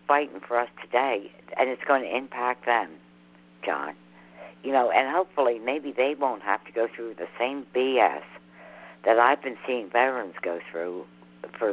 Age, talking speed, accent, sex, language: 60-79, 170 wpm, American, female, English